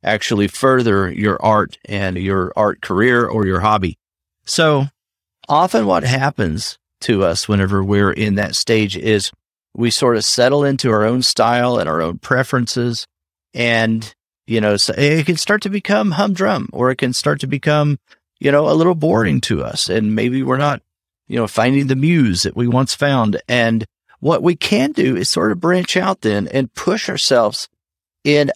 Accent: American